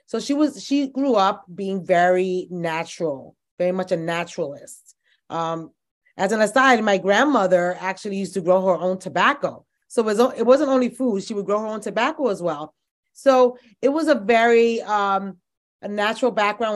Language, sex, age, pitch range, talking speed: English, female, 20-39, 185-230 Hz, 180 wpm